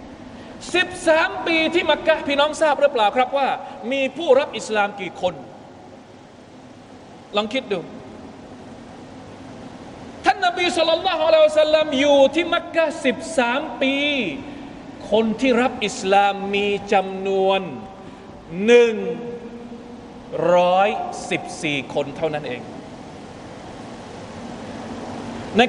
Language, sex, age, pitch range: Thai, male, 20-39, 240-310 Hz